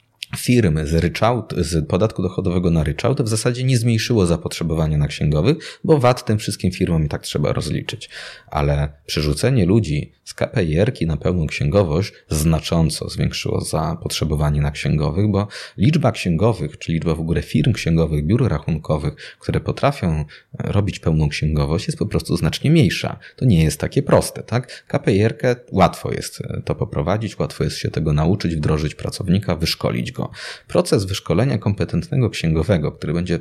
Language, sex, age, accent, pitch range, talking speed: Polish, male, 30-49, native, 80-120 Hz, 150 wpm